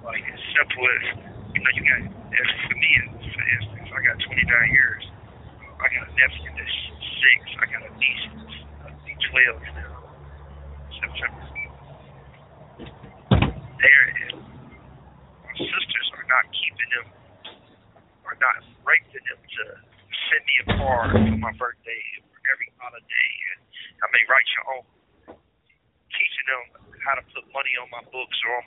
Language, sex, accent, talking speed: English, male, American, 140 wpm